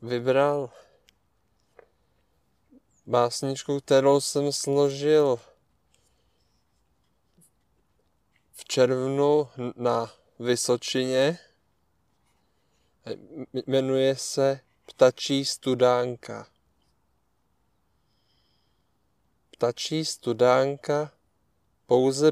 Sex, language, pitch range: male, Czech, 115-130 Hz